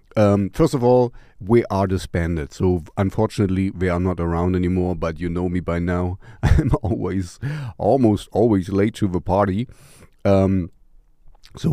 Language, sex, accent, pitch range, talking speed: English, male, German, 90-115 Hz, 160 wpm